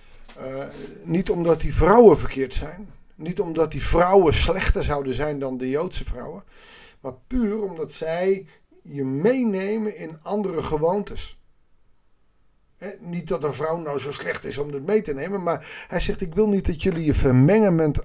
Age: 50-69